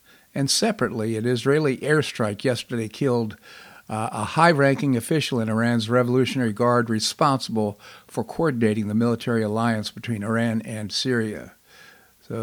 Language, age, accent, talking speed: English, 50-69, American, 125 wpm